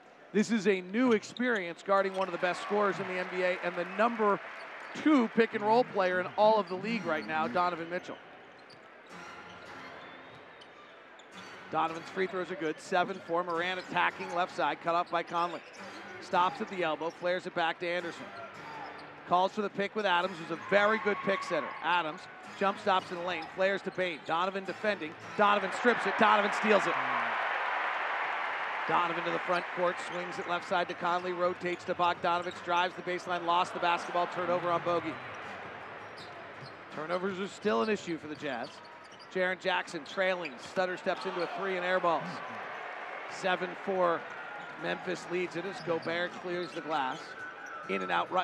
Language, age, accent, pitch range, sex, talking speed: English, 40-59, American, 175-200 Hz, male, 170 wpm